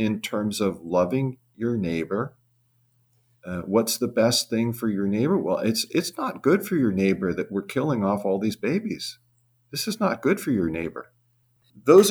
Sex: male